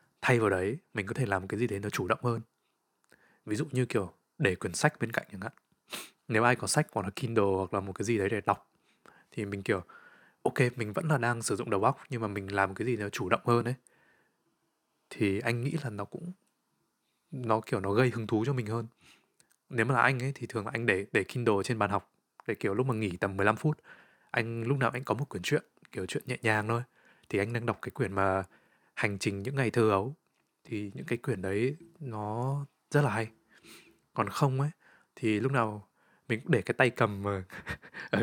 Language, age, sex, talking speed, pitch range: Vietnamese, 20-39, male, 235 wpm, 105-130 Hz